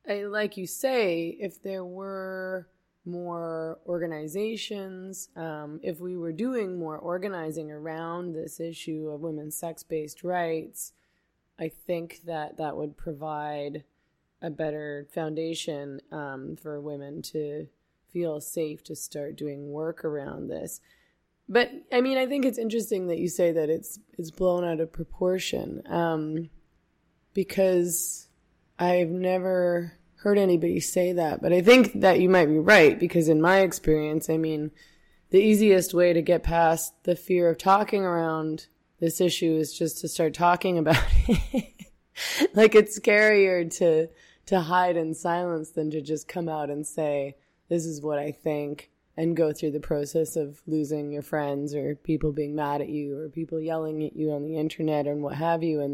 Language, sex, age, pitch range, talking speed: English, female, 20-39, 155-180 Hz, 160 wpm